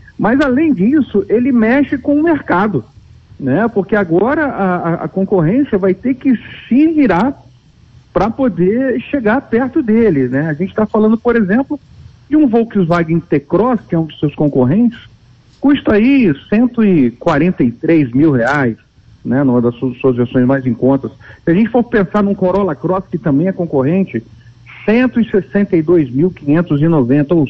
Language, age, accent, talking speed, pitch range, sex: Portuguese, 50-69, Brazilian, 150 wpm, 135-215 Hz, male